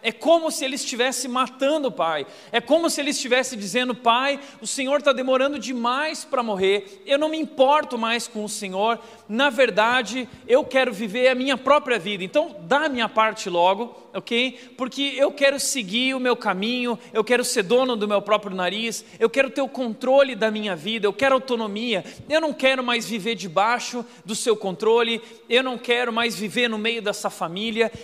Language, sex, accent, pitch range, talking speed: Portuguese, male, Brazilian, 215-275 Hz, 195 wpm